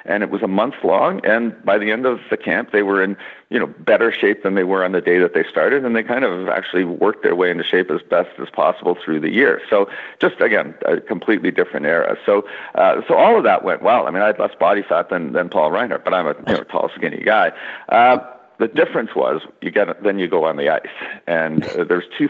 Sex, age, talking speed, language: male, 50-69, 260 wpm, English